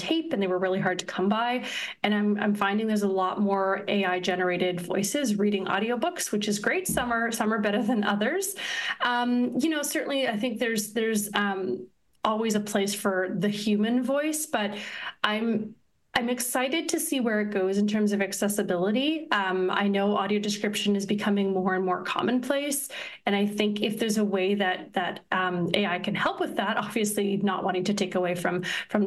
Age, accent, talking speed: 30-49, American, 195 wpm